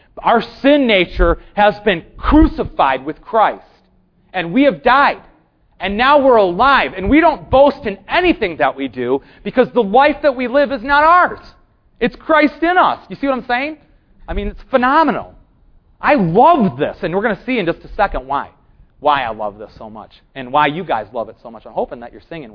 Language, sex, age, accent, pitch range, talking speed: English, male, 30-49, American, 120-195 Hz, 210 wpm